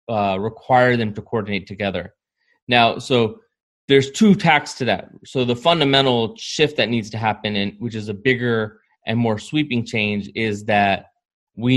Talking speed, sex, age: 170 wpm, male, 20-39